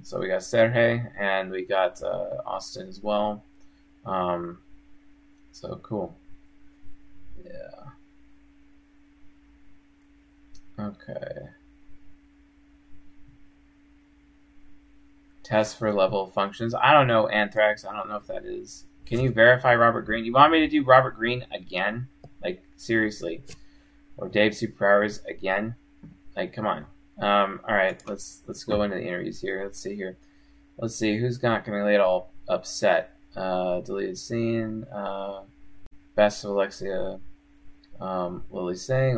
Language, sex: English, male